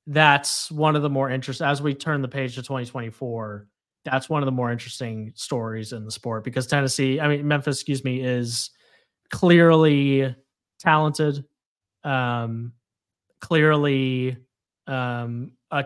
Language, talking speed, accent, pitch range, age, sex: English, 140 wpm, American, 120-145 Hz, 30-49, male